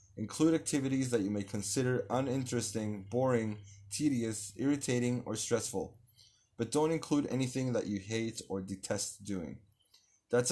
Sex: male